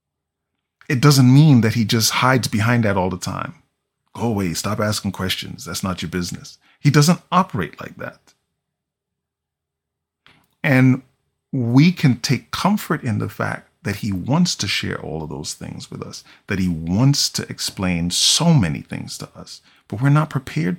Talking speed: 170 wpm